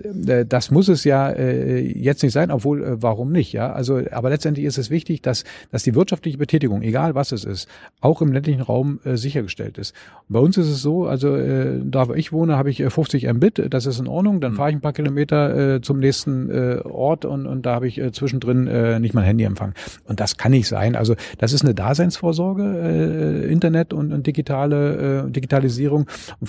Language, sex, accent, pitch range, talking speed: German, male, German, 110-145 Hz, 215 wpm